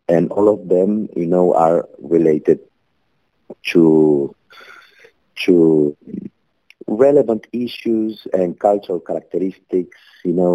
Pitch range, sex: 80-130 Hz, male